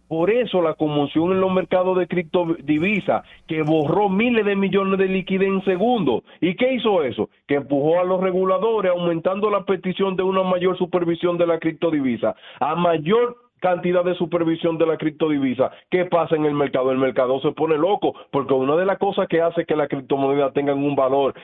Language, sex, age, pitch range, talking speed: Spanish, male, 40-59, 140-185 Hz, 190 wpm